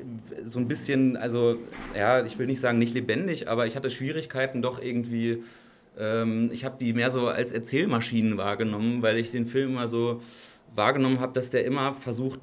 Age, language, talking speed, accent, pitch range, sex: 30-49, German, 185 wpm, German, 110-130 Hz, male